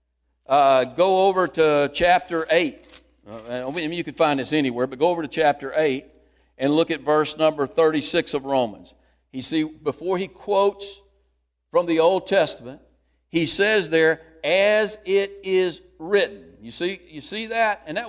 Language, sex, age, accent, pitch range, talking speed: English, male, 60-79, American, 140-195 Hz, 170 wpm